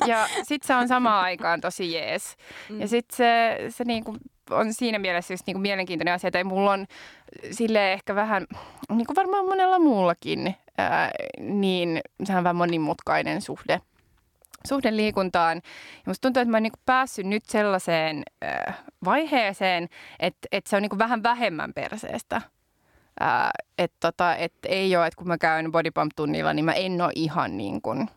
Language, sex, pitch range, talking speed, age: Finnish, female, 170-225 Hz, 160 wpm, 20-39